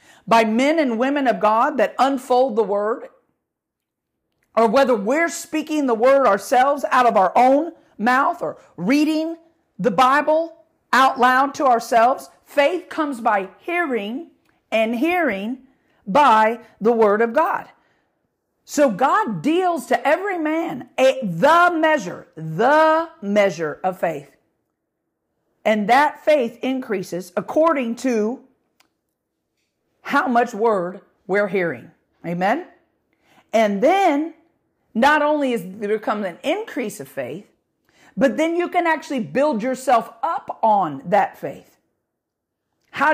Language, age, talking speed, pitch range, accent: English, 50-69, 120 wpm, 225-305 Hz, American